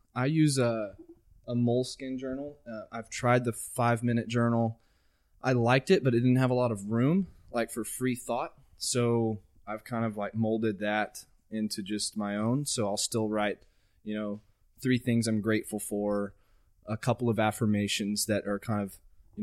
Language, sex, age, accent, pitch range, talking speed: English, male, 20-39, American, 100-120 Hz, 180 wpm